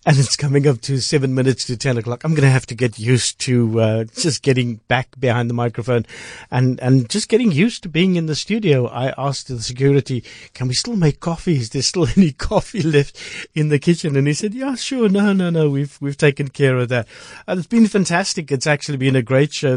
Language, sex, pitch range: English, male, 120-145 Hz